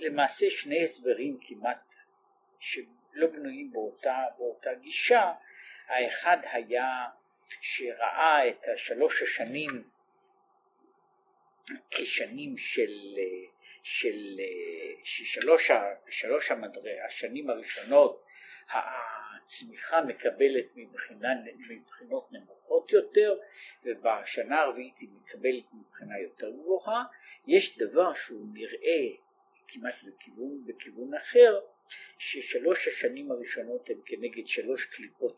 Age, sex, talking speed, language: 50-69, male, 80 wpm, Hebrew